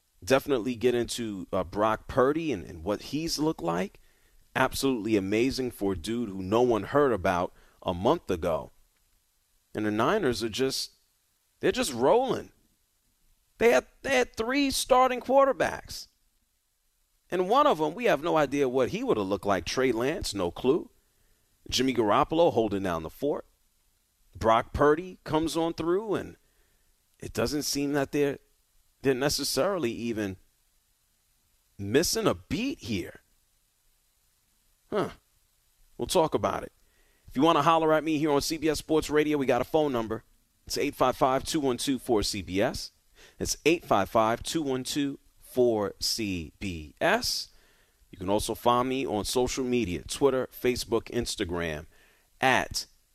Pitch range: 100-145 Hz